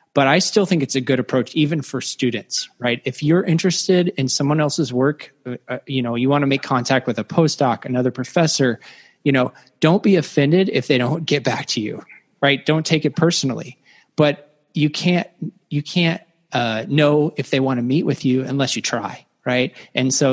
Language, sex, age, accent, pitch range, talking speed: English, male, 20-39, American, 125-150 Hz, 205 wpm